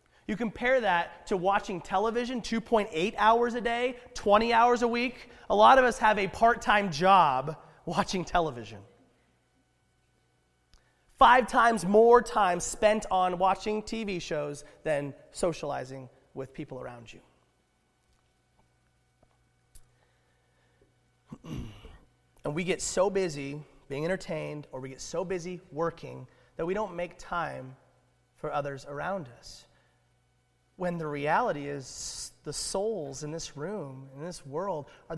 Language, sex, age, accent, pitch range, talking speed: English, male, 30-49, American, 130-200 Hz, 125 wpm